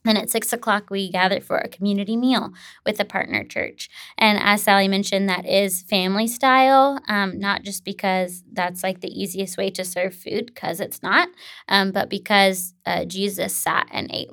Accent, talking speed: American, 190 wpm